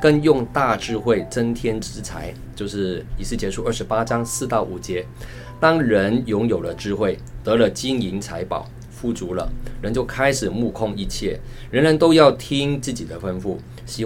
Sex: male